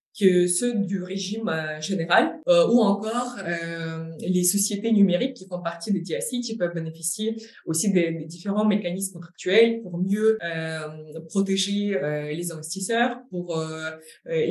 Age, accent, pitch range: 20-39, French, 165-210 Hz